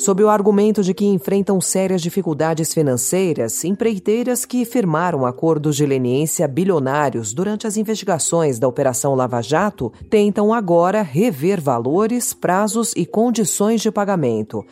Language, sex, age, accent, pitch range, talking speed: Portuguese, female, 40-59, Brazilian, 135-200 Hz, 130 wpm